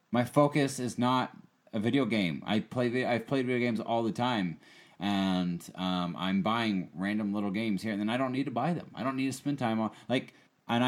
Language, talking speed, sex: English, 225 wpm, male